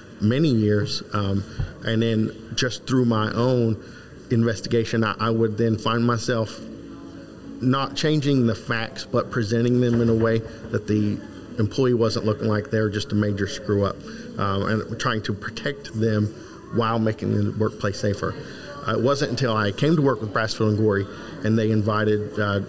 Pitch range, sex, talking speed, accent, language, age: 105-115 Hz, male, 175 wpm, American, English, 50-69